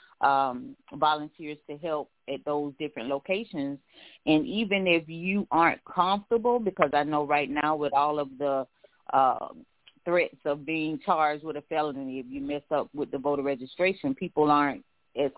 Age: 30-49